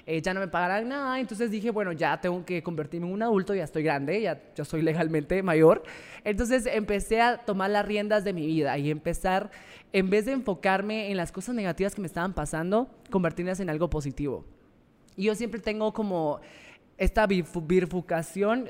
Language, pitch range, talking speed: Spanish, 175-220 Hz, 190 wpm